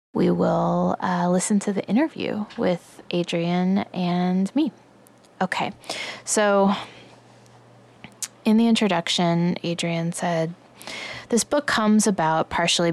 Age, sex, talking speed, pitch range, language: 20-39, female, 105 wpm, 160-190 Hz, English